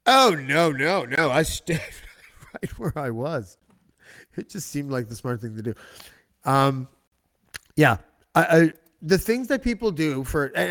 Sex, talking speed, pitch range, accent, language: male, 170 wpm, 120-155 Hz, American, English